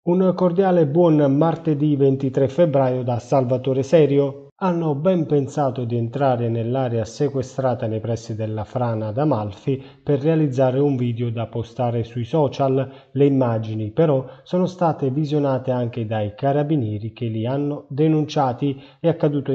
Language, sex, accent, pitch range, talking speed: Italian, male, native, 120-150 Hz, 140 wpm